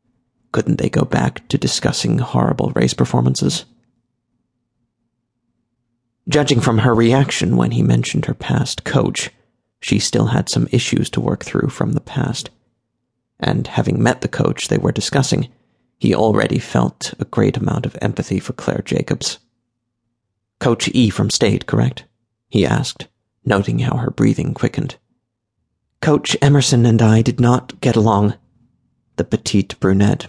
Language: English